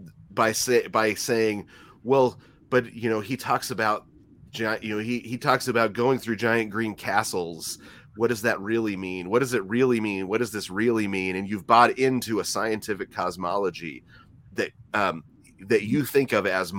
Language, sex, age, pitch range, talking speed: English, male, 30-49, 95-120 Hz, 180 wpm